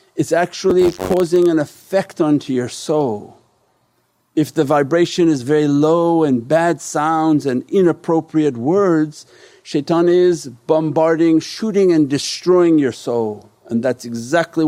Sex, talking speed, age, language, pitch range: male, 125 wpm, 50-69, English, 120-165 Hz